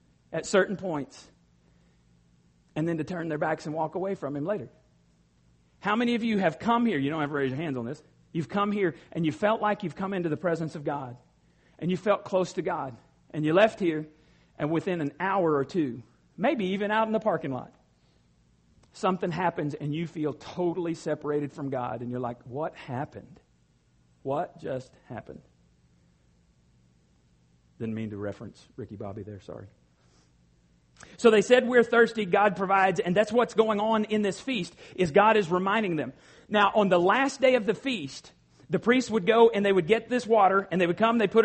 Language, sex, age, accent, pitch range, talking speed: English, male, 50-69, American, 155-230 Hz, 200 wpm